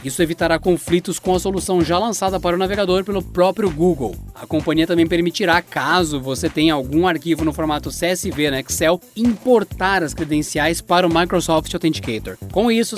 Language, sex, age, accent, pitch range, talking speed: Portuguese, male, 20-39, Brazilian, 160-200 Hz, 170 wpm